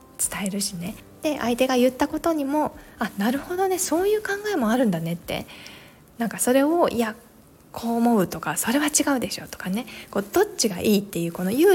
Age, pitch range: 20-39, 185-280 Hz